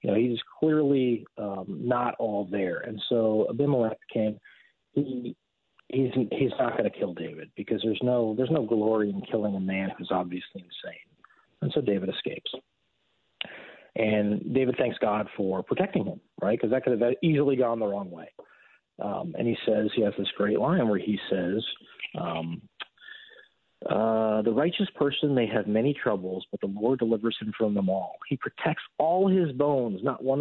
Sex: male